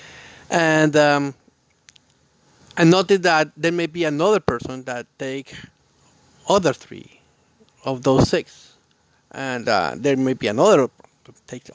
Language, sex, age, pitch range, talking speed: English, male, 50-69, 130-155 Hz, 125 wpm